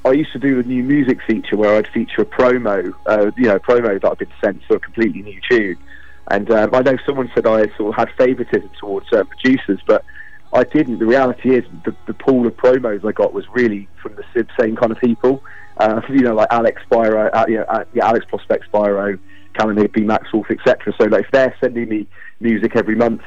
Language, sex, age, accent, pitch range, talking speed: English, male, 30-49, British, 110-130 Hz, 230 wpm